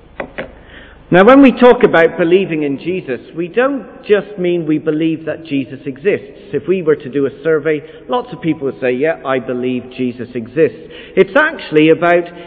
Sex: male